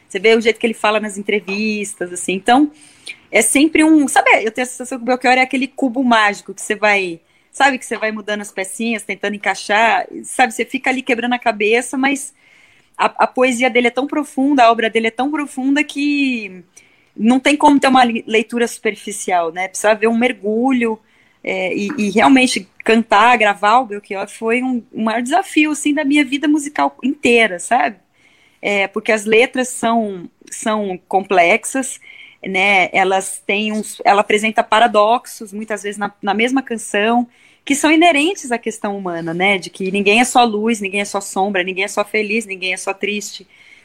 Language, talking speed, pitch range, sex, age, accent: Portuguese, 185 wpm, 205-255 Hz, female, 20-39, Brazilian